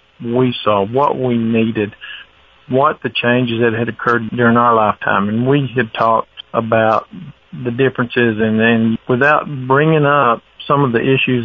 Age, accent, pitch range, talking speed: 50-69, American, 110-130 Hz, 155 wpm